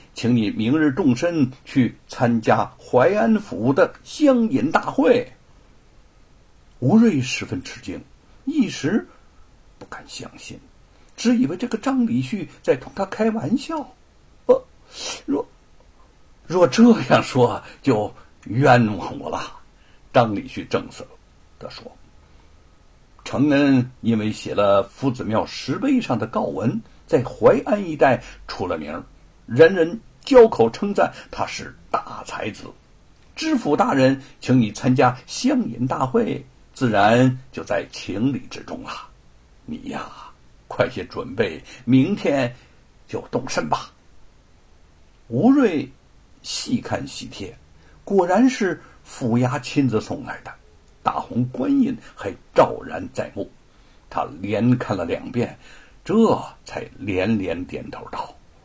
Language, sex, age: Chinese, male, 60-79